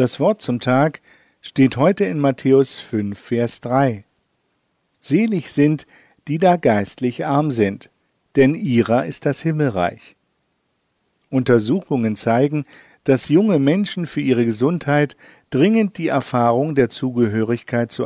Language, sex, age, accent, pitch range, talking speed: German, male, 50-69, German, 120-150 Hz, 125 wpm